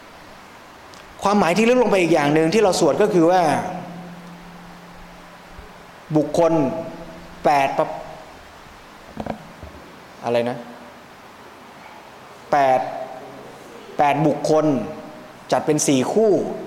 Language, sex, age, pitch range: Thai, male, 20-39, 135-185 Hz